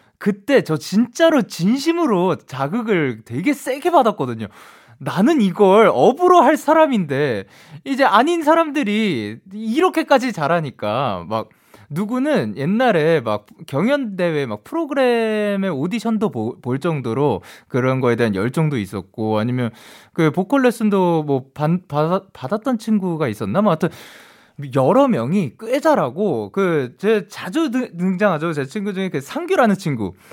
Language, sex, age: Korean, male, 20-39